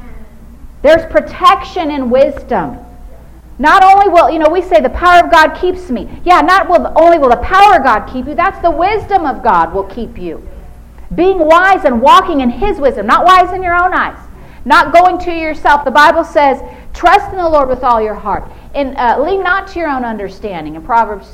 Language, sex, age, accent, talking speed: English, female, 50-69, American, 205 wpm